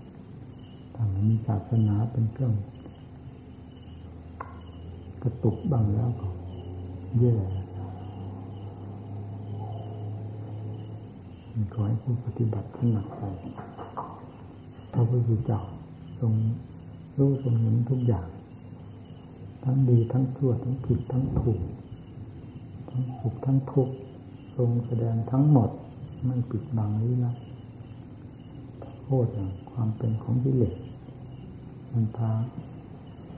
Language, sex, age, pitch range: Thai, male, 60-79, 105-125 Hz